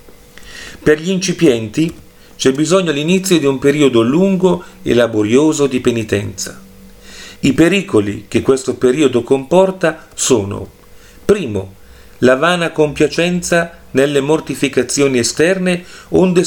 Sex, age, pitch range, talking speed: male, 40-59, 120-165 Hz, 105 wpm